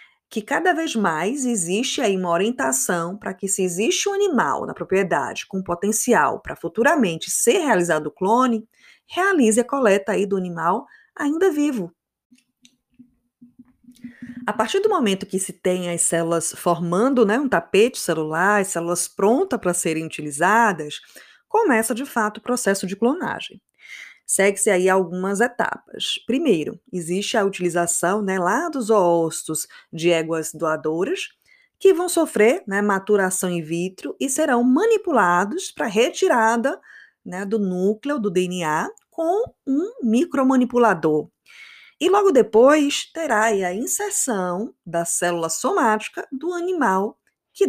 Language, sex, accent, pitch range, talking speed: Portuguese, female, Brazilian, 180-270 Hz, 135 wpm